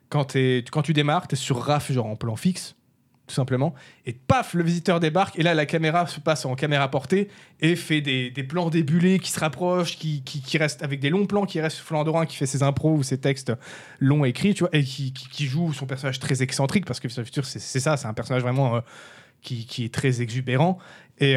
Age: 20-39